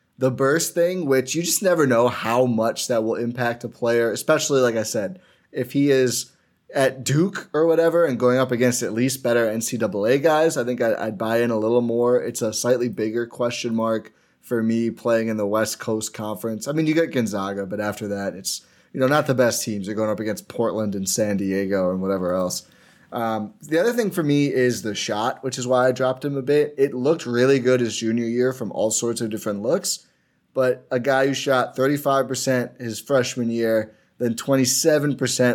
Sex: male